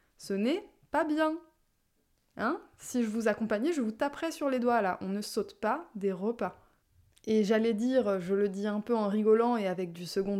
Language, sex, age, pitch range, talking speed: French, female, 20-39, 200-255 Hz, 210 wpm